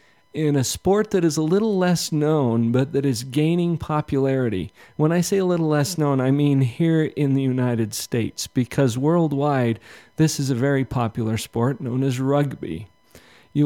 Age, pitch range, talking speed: 50-69, 120-155 Hz, 175 wpm